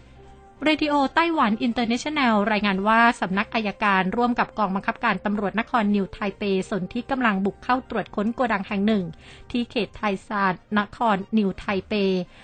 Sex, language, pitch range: female, Thai, 195-230 Hz